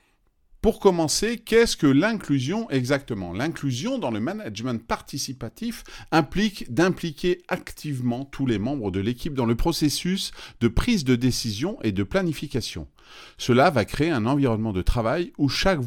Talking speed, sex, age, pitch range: 145 wpm, male, 40-59, 110-160 Hz